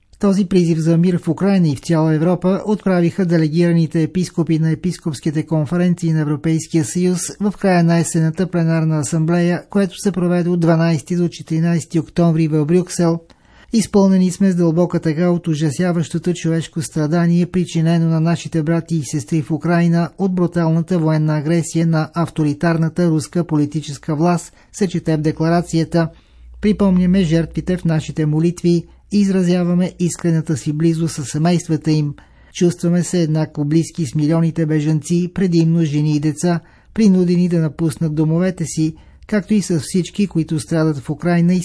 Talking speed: 145 wpm